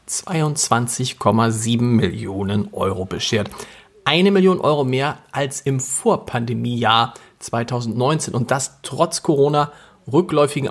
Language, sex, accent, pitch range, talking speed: German, male, German, 115-145 Hz, 95 wpm